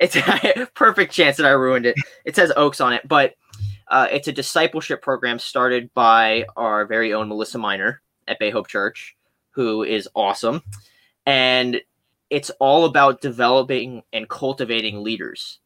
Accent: American